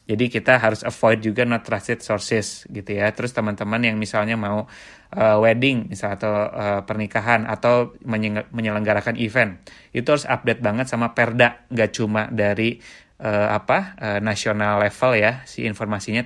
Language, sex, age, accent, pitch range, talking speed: Indonesian, male, 30-49, native, 105-120 Hz, 155 wpm